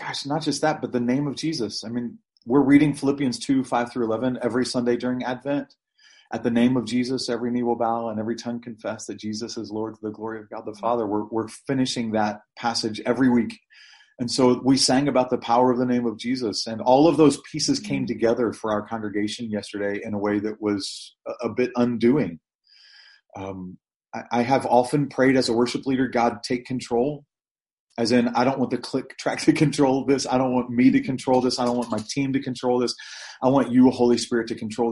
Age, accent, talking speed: 30-49, American, 225 wpm